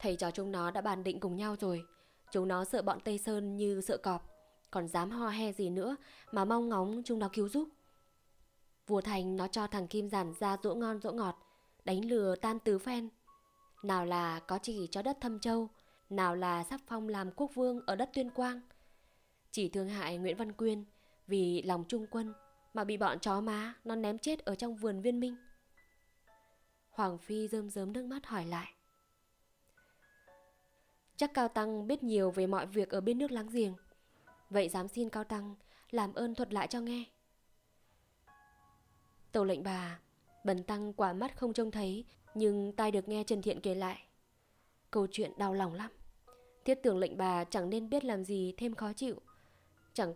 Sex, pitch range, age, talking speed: female, 190-230 Hz, 20-39, 190 wpm